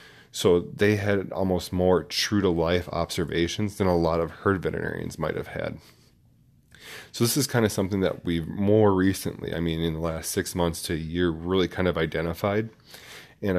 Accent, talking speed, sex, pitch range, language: American, 180 wpm, male, 85-100 Hz, English